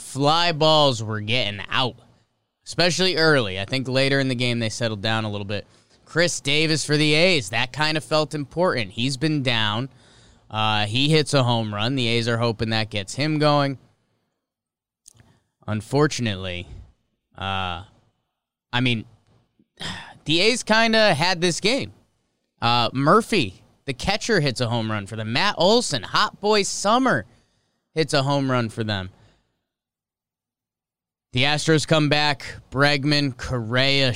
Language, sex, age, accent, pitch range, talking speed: English, male, 20-39, American, 110-140 Hz, 150 wpm